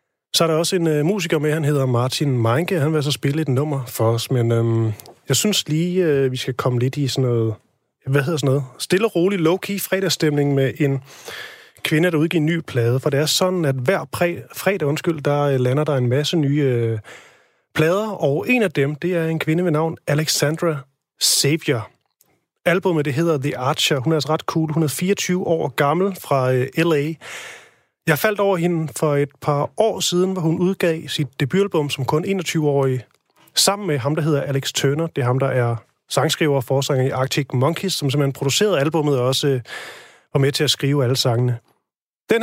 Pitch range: 135-170 Hz